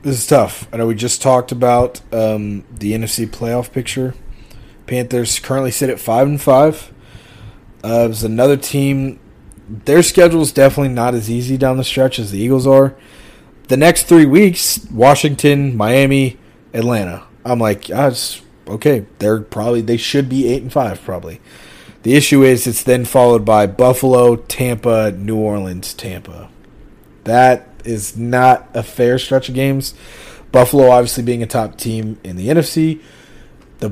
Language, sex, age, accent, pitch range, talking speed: English, male, 30-49, American, 110-130 Hz, 160 wpm